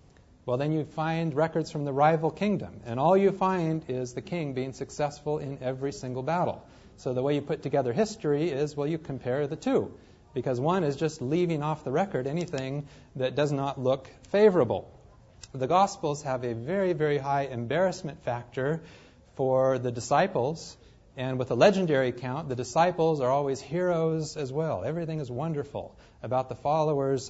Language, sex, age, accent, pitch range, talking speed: English, male, 40-59, American, 130-165 Hz, 175 wpm